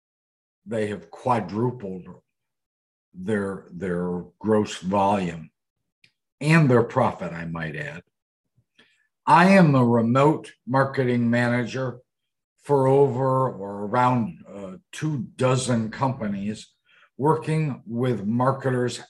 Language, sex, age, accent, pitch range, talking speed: English, male, 60-79, American, 105-140 Hz, 95 wpm